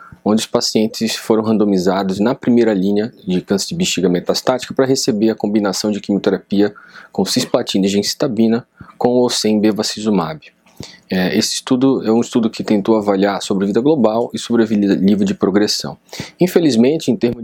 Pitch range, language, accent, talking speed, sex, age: 95-115 Hz, Portuguese, Brazilian, 155 wpm, male, 20-39